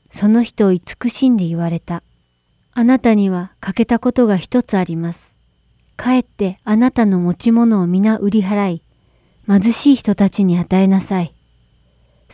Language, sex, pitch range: Japanese, female, 175-240 Hz